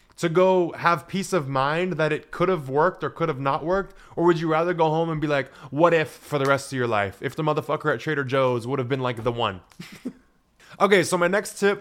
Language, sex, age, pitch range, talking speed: English, male, 20-39, 140-175 Hz, 255 wpm